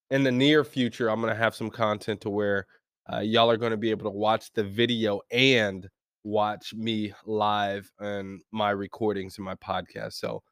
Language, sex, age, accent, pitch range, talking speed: English, male, 20-39, American, 115-135 Hz, 195 wpm